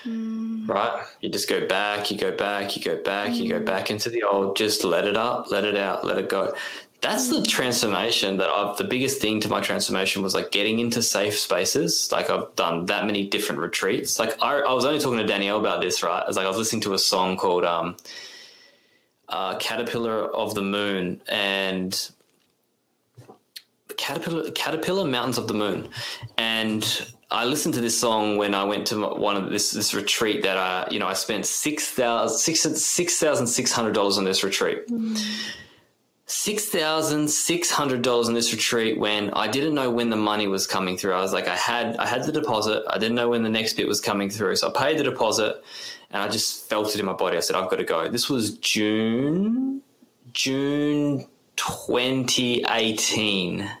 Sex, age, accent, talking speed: male, 20-39, Australian, 185 wpm